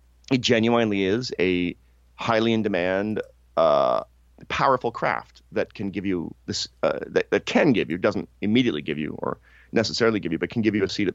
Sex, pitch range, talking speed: male, 70-105 Hz, 195 wpm